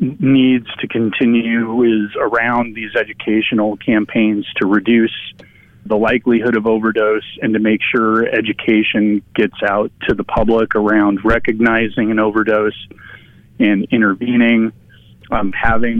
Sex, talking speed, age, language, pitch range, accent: male, 120 wpm, 30-49, English, 110-120 Hz, American